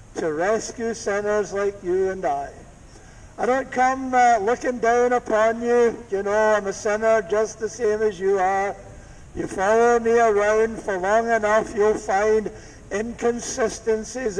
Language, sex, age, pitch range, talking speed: English, male, 60-79, 195-230 Hz, 150 wpm